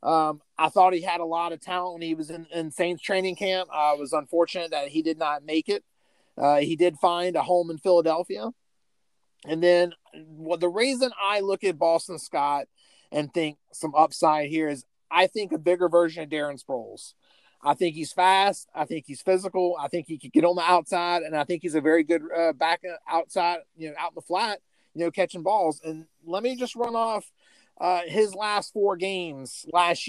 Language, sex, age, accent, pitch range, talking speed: English, male, 30-49, American, 160-205 Hz, 215 wpm